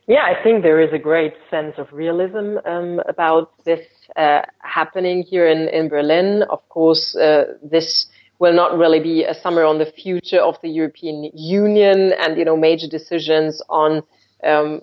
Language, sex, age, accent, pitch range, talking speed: English, female, 30-49, German, 155-175 Hz, 175 wpm